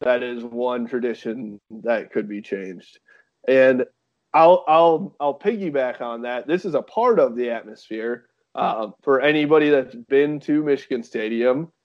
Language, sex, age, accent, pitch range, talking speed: English, male, 20-39, American, 130-170 Hz, 150 wpm